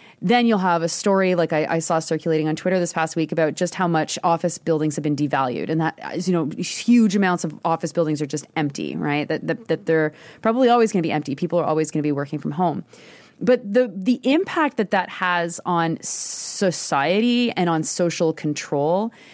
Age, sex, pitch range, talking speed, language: 30-49, female, 165-225 Hz, 215 wpm, English